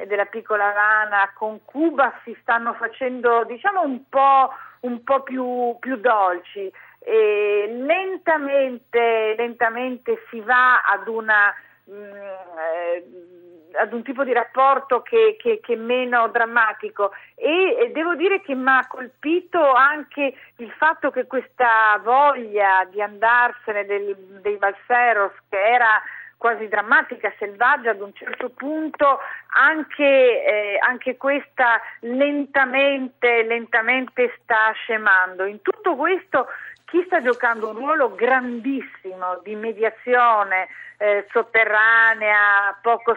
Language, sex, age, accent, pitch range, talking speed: Italian, female, 40-59, native, 210-275 Hz, 115 wpm